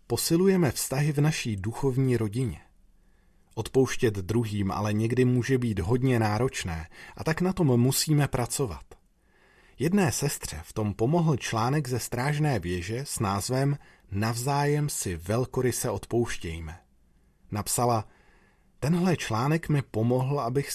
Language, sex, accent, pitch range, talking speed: Czech, male, native, 100-135 Hz, 120 wpm